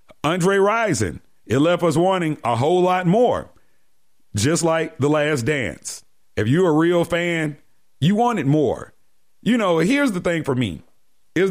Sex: male